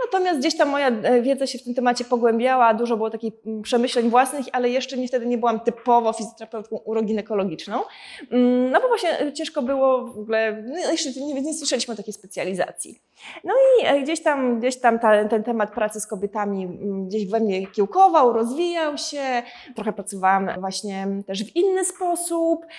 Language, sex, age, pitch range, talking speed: Polish, female, 20-39, 220-285 Hz, 165 wpm